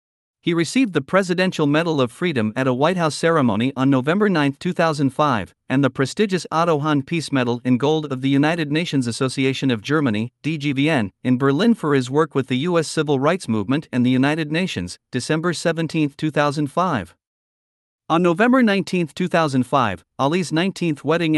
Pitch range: 130-175 Hz